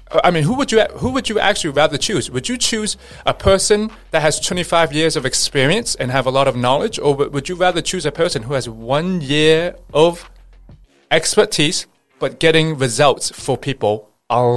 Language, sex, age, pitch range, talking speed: English, male, 30-49, 120-160 Hz, 195 wpm